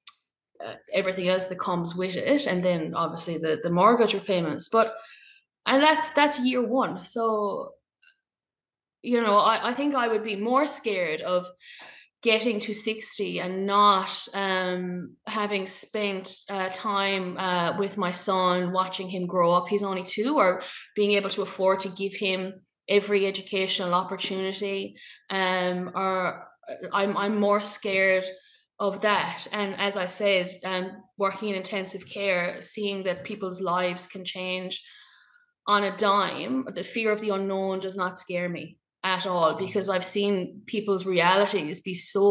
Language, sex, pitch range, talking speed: English, female, 185-215 Hz, 150 wpm